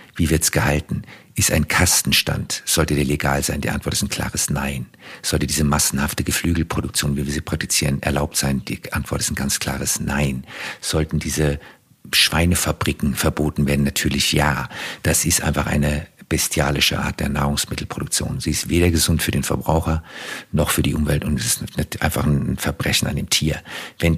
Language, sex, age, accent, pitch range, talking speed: German, male, 50-69, German, 70-80 Hz, 175 wpm